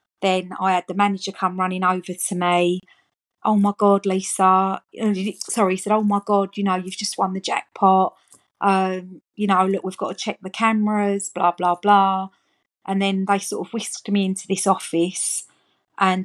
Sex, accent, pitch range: female, British, 185-205 Hz